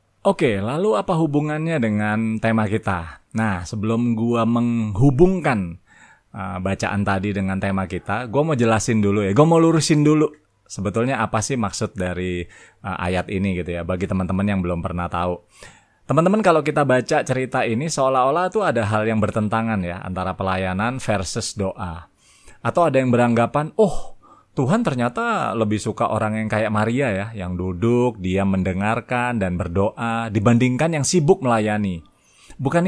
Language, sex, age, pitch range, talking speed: Indonesian, male, 30-49, 100-145 Hz, 155 wpm